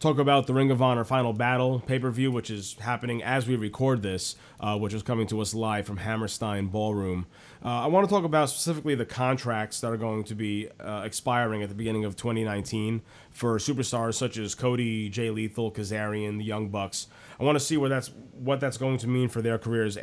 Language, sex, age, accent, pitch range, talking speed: English, male, 30-49, American, 105-130 Hz, 220 wpm